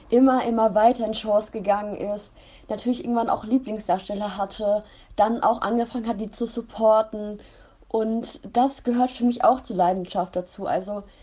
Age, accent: 20-39, German